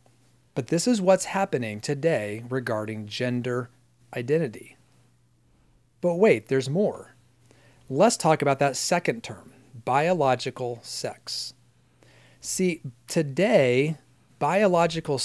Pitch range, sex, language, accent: 125-170 Hz, male, English, American